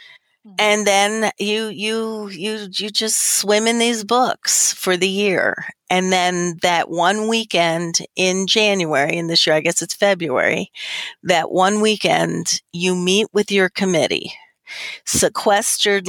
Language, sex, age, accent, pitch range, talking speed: English, female, 40-59, American, 185-230 Hz, 140 wpm